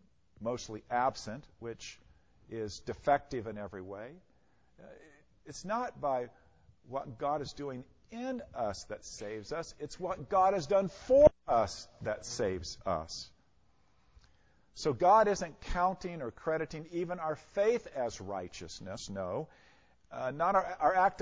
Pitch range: 100-165 Hz